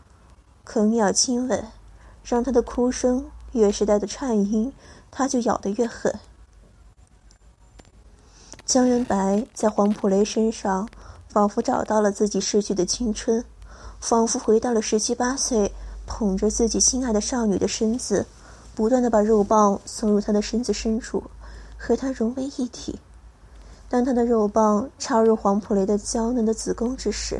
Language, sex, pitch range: Chinese, female, 200-235 Hz